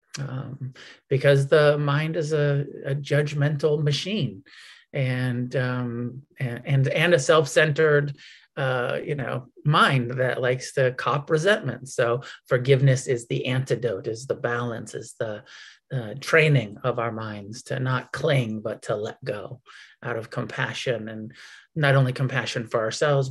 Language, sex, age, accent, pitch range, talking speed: English, male, 30-49, American, 130-165 Hz, 140 wpm